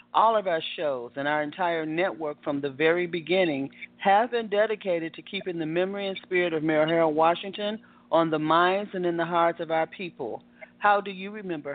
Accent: American